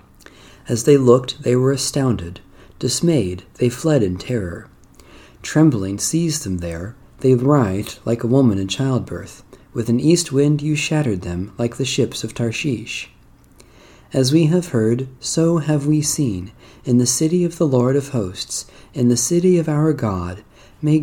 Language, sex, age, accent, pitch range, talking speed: English, male, 40-59, American, 105-150 Hz, 165 wpm